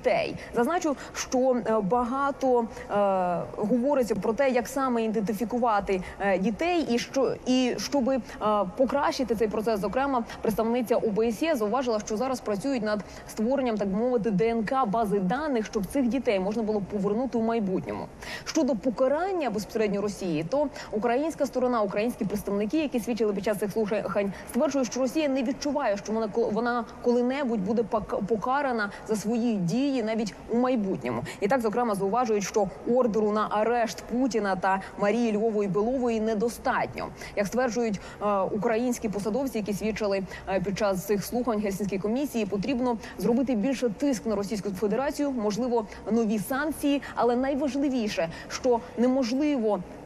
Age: 20-39